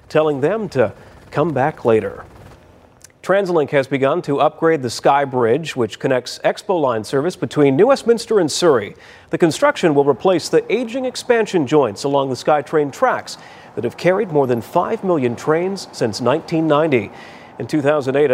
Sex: male